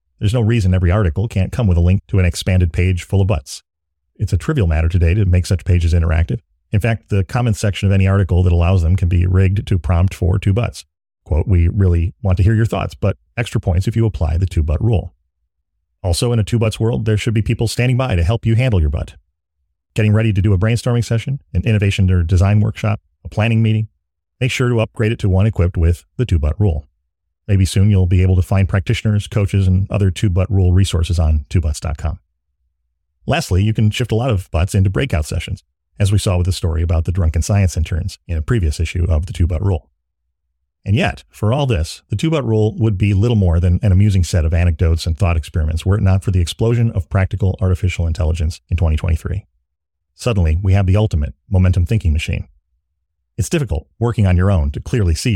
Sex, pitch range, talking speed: male, 85-105 Hz, 220 wpm